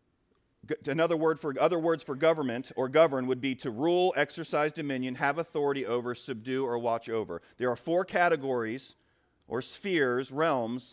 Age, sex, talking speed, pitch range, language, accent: 40-59, male, 160 wpm, 140-220 Hz, English, American